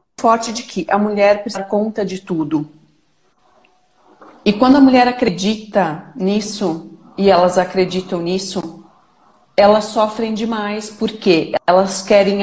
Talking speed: 125 wpm